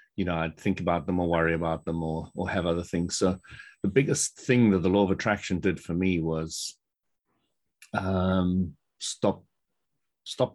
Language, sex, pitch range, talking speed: English, male, 85-105 Hz, 175 wpm